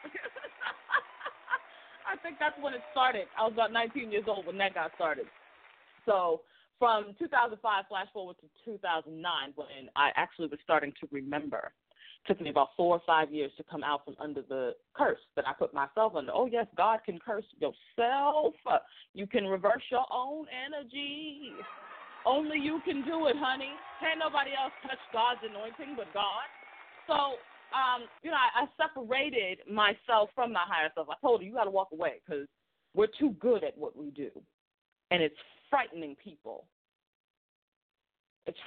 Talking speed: 170 wpm